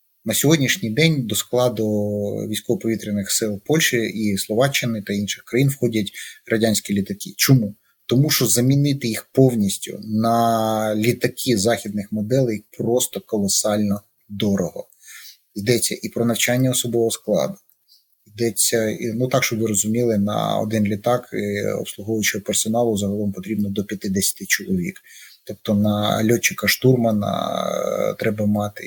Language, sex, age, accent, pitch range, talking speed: Russian, male, 30-49, native, 105-125 Hz, 115 wpm